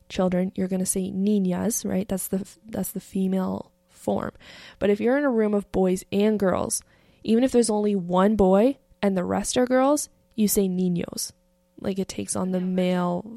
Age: 20-39